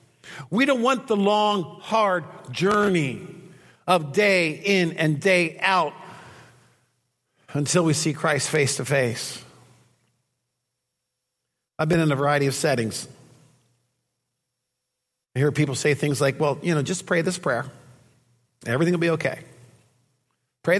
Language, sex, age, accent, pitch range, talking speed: English, male, 50-69, American, 130-170 Hz, 130 wpm